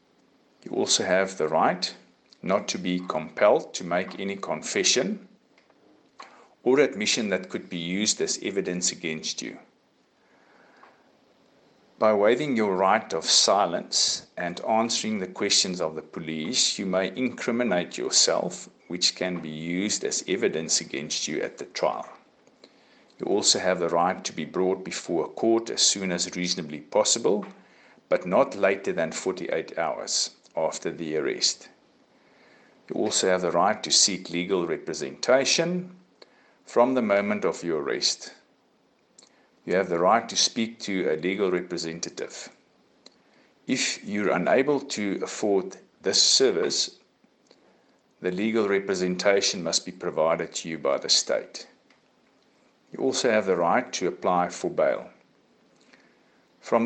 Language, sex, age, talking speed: English, male, 50-69, 135 wpm